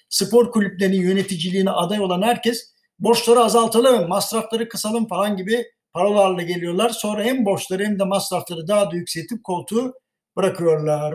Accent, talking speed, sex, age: native, 135 wpm, male, 60-79